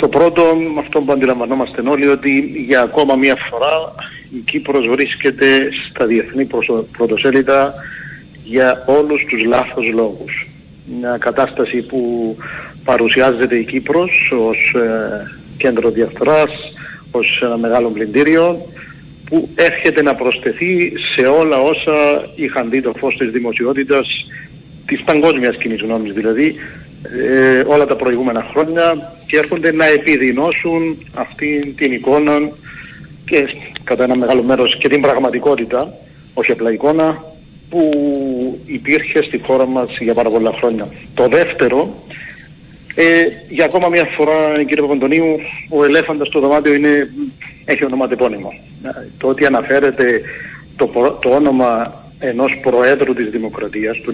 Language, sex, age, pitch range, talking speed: Greek, male, 50-69, 120-150 Hz, 140 wpm